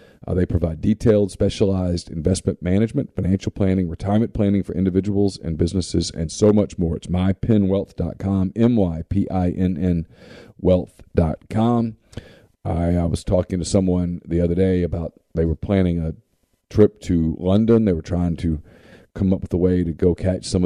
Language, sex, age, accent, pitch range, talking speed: English, male, 40-59, American, 85-105 Hz, 150 wpm